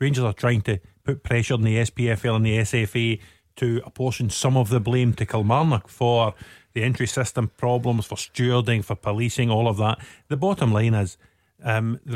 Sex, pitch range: male, 110-130 Hz